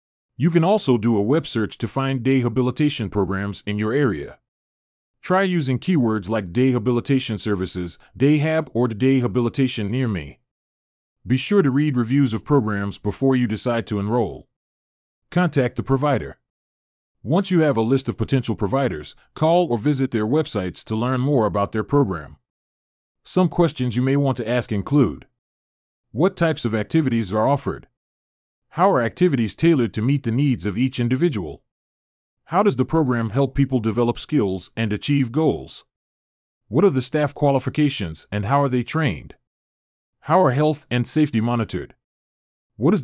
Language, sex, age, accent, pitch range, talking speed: English, male, 30-49, American, 100-140 Hz, 160 wpm